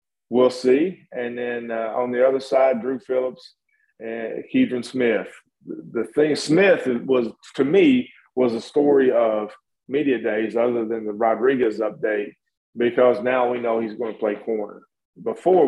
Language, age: English, 40-59